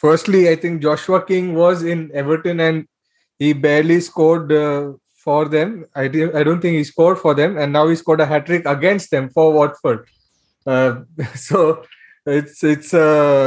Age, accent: 20-39, Indian